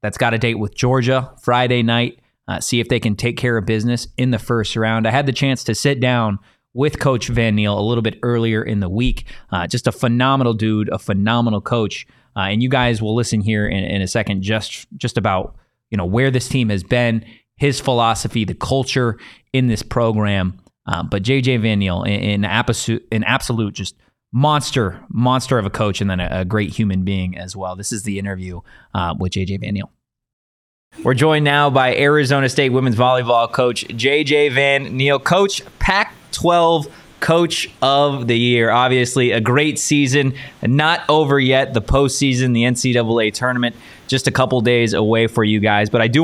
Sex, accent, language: male, American, English